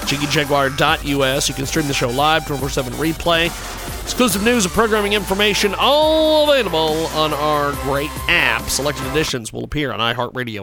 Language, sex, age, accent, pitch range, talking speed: English, male, 40-59, American, 140-170 Hz, 145 wpm